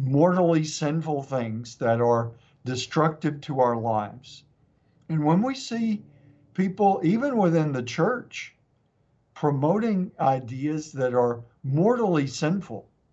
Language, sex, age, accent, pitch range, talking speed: English, male, 60-79, American, 120-160 Hz, 110 wpm